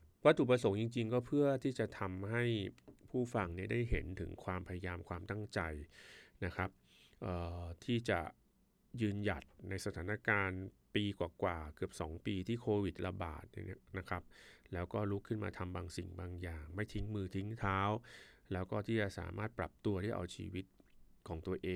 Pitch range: 90-110 Hz